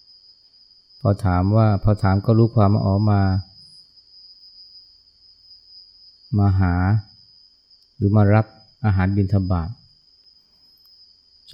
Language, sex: Thai, male